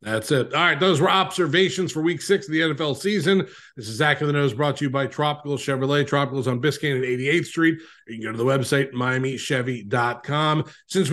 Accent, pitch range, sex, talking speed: American, 140-185 Hz, male, 215 wpm